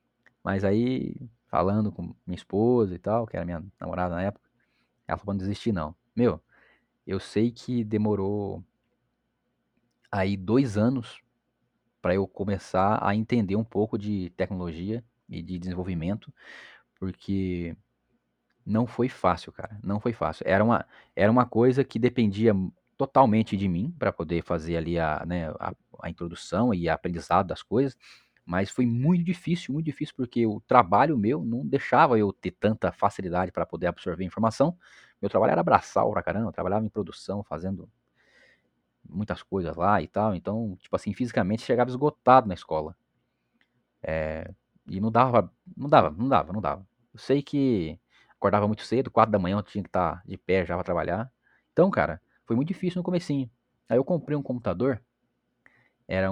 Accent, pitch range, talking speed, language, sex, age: Brazilian, 90-120 Hz, 165 wpm, Portuguese, male, 20-39